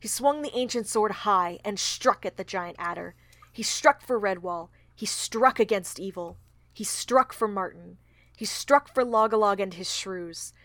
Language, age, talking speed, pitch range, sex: English, 20-39, 175 wpm, 180-230 Hz, female